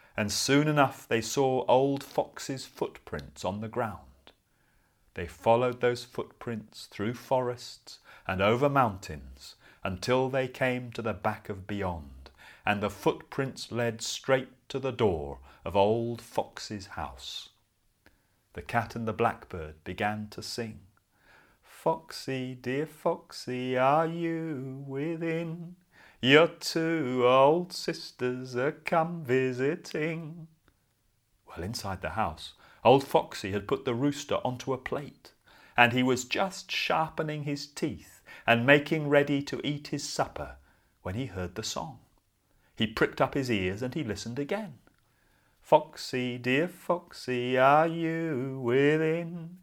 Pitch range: 110-150 Hz